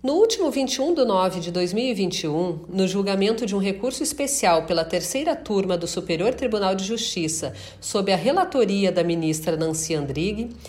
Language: Portuguese